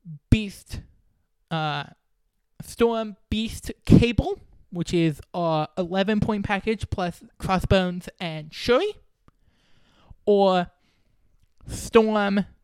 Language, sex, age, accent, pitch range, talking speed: English, male, 20-39, American, 165-210 Hz, 80 wpm